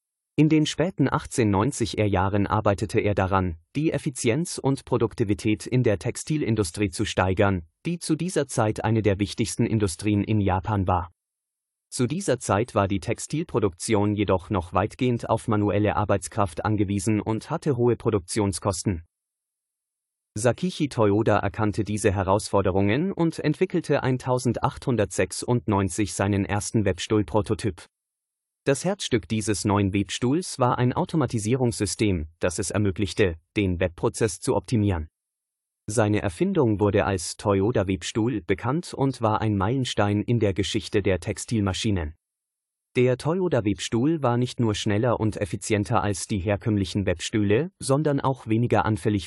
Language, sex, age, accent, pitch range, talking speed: German, male, 30-49, German, 100-125 Hz, 125 wpm